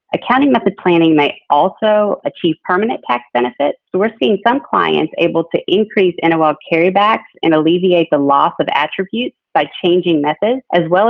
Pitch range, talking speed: 155-195 Hz, 160 wpm